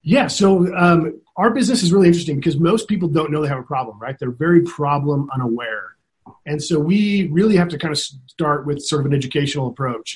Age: 30-49